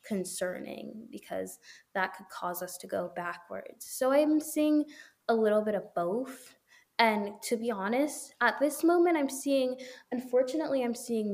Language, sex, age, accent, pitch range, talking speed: English, female, 10-29, American, 185-215 Hz, 155 wpm